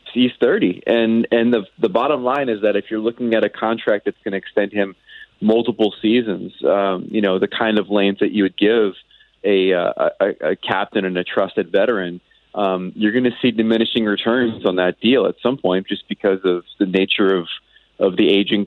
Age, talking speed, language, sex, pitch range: 30-49, 210 wpm, English, male, 95-115 Hz